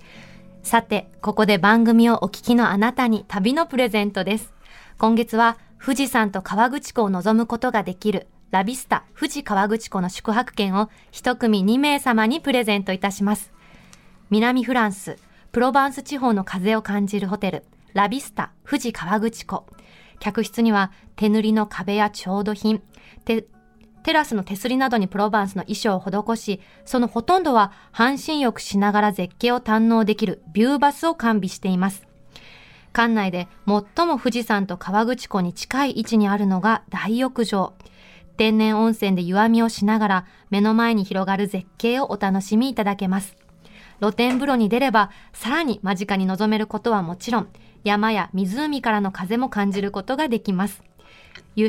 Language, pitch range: Japanese, 200-235 Hz